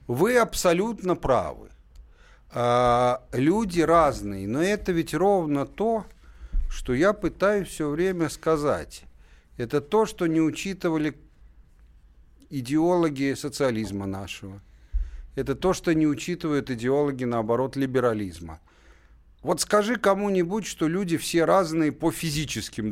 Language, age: Russian, 50-69